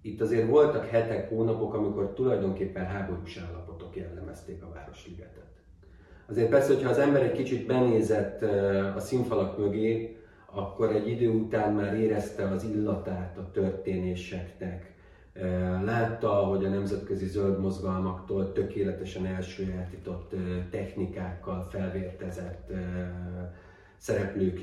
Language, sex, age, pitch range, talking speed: Hungarian, male, 40-59, 90-95 Hz, 105 wpm